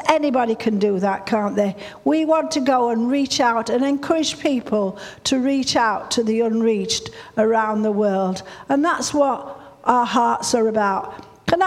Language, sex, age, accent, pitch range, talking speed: English, female, 50-69, British, 240-325 Hz, 170 wpm